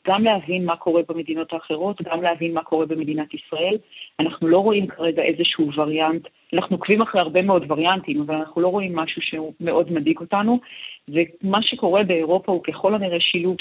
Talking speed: 165 wpm